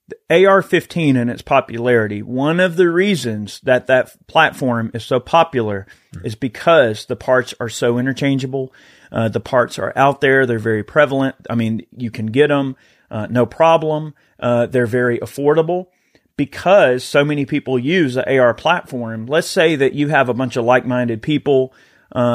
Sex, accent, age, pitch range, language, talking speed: male, American, 30-49, 125-155 Hz, English, 170 wpm